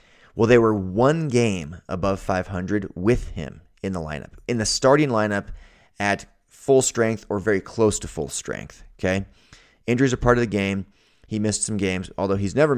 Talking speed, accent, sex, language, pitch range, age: 185 wpm, American, male, English, 95-120 Hz, 30-49